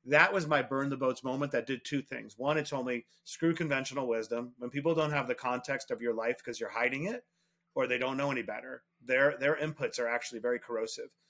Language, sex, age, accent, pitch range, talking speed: English, male, 30-49, American, 120-155 Hz, 230 wpm